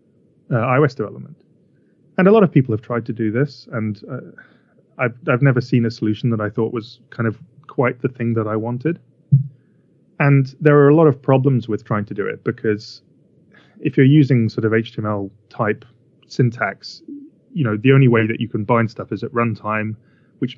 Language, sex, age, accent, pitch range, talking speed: English, male, 20-39, British, 110-140 Hz, 200 wpm